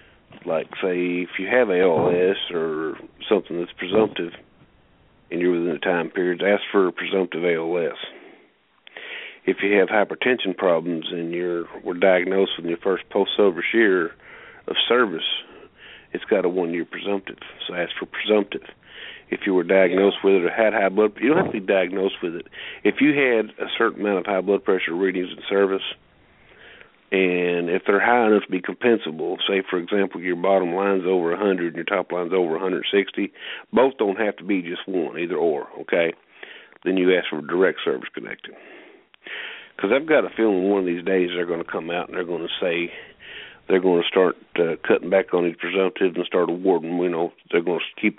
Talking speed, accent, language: 195 wpm, American, English